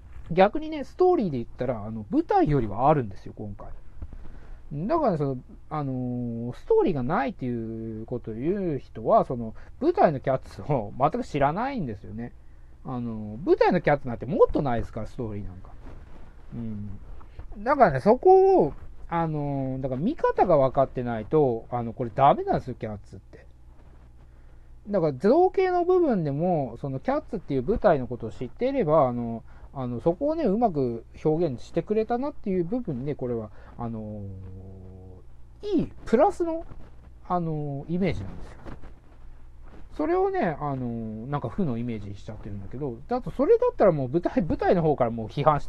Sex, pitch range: male, 110-180 Hz